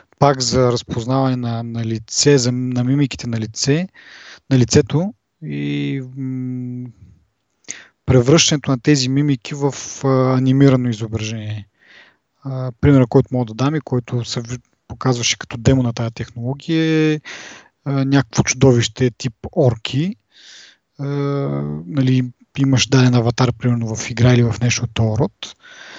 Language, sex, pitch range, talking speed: Bulgarian, male, 120-140 Hz, 130 wpm